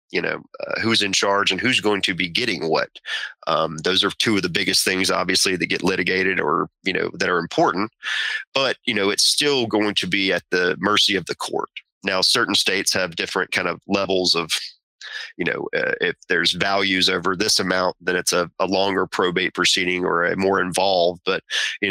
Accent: American